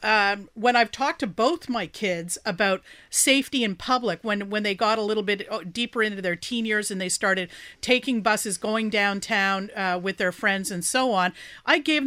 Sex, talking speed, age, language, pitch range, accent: female, 200 wpm, 40-59, English, 205-250 Hz, American